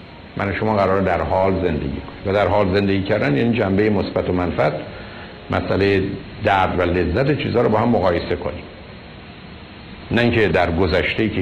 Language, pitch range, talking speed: Persian, 90-115 Hz, 170 wpm